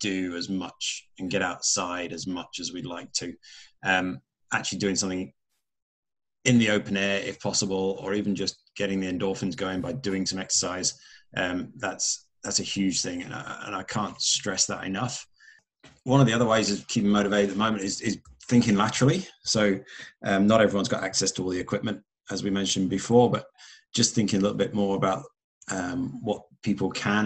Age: 30-49